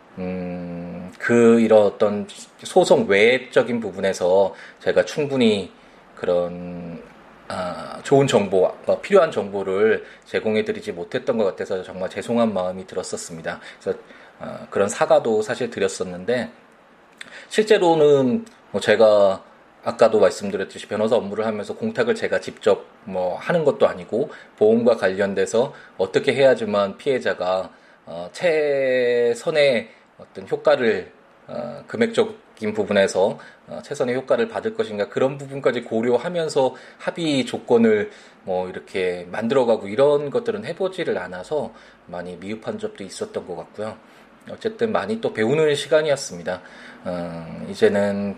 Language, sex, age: Korean, male, 20-39